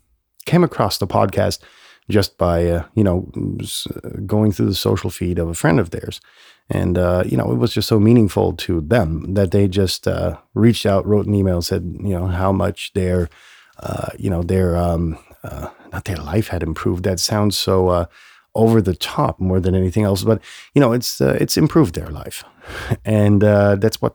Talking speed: 200 wpm